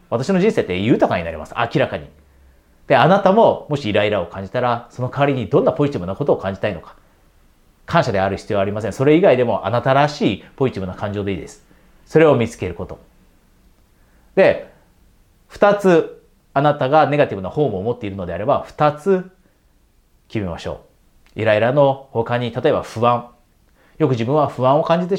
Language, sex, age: Japanese, male, 30-49